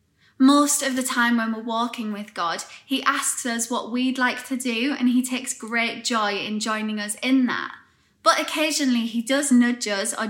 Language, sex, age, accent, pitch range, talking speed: English, female, 10-29, British, 220-255 Hz, 200 wpm